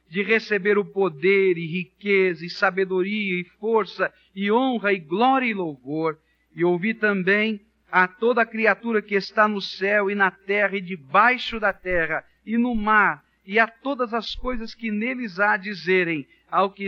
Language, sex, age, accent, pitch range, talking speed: Portuguese, male, 50-69, Brazilian, 155-210 Hz, 165 wpm